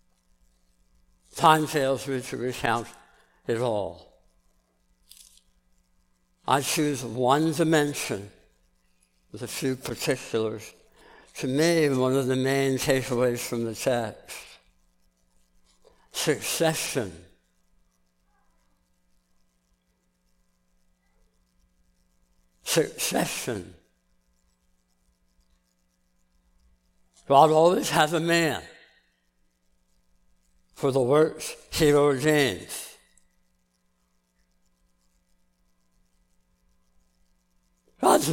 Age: 60-79